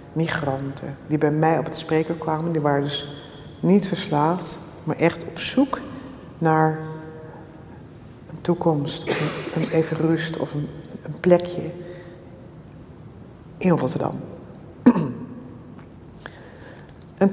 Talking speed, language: 110 wpm, Dutch